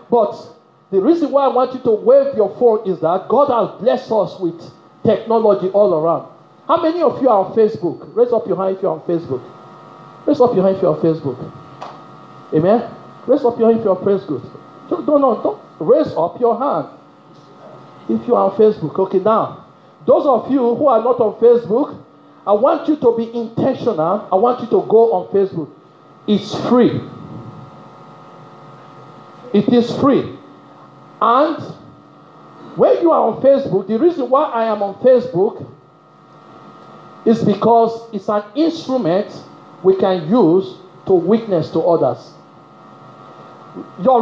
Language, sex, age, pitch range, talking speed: English, male, 50-69, 195-260 Hz, 165 wpm